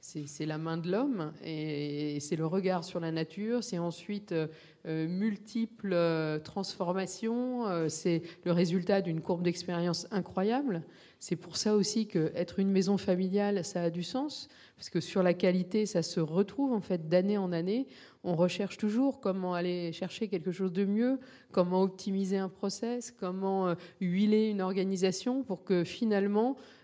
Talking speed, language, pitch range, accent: 165 wpm, French, 170-205 Hz, French